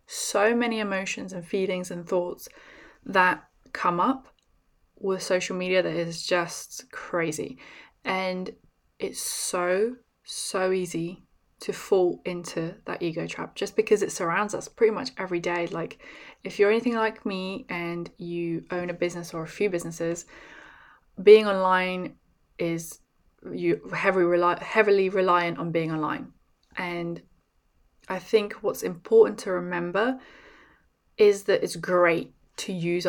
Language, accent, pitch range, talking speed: English, British, 170-205 Hz, 140 wpm